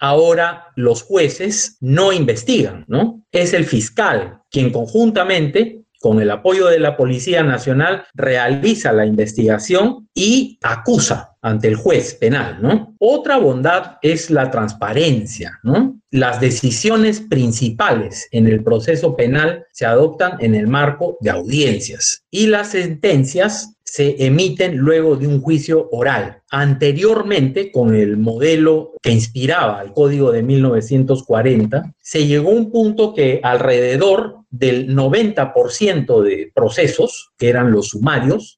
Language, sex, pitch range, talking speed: Spanish, male, 125-205 Hz, 130 wpm